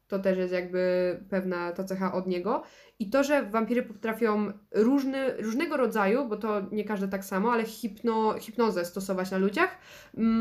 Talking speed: 175 wpm